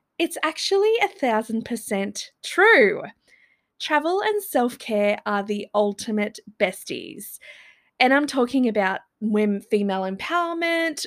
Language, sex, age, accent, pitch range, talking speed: English, female, 20-39, Australian, 210-305 Hz, 115 wpm